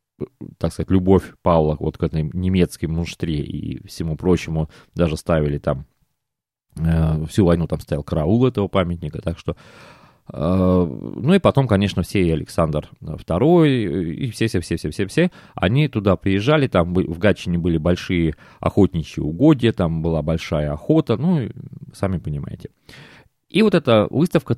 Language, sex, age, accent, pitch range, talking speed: Russian, male, 30-49, native, 85-140 Hz, 140 wpm